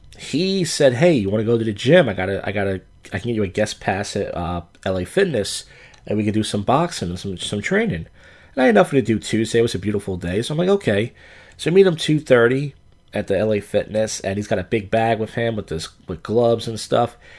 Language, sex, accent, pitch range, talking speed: English, male, American, 95-130 Hz, 265 wpm